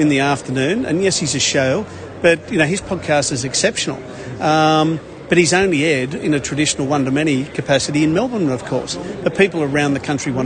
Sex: male